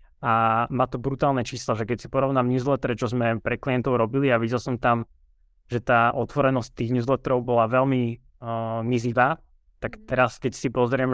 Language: Slovak